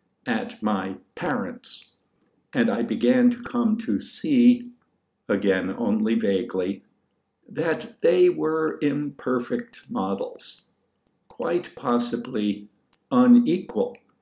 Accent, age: American, 60-79